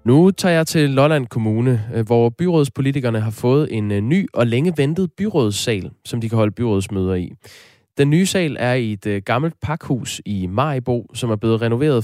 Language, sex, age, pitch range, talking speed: Danish, male, 20-39, 105-135 Hz, 180 wpm